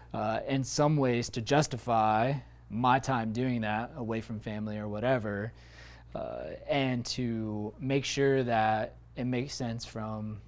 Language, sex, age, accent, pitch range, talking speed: English, male, 20-39, American, 110-125 Hz, 145 wpm